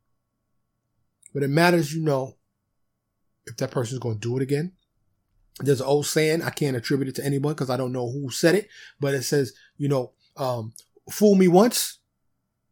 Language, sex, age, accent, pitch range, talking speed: English, male, 30-49, American, 115-155 Hz, 185 wpm